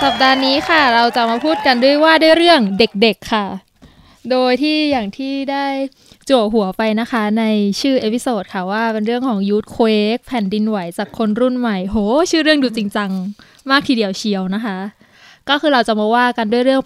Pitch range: 205-255 Hz